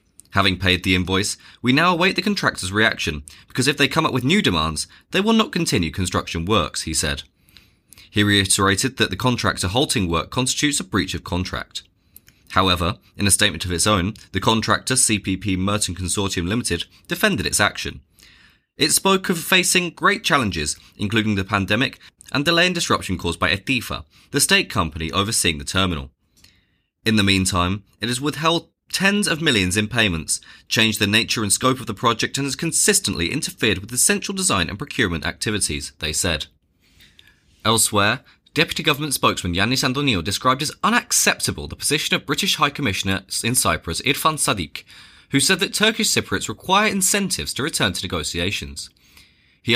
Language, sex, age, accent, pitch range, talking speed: English, male, 20-39, British, 90-135 Hz, 170 wpm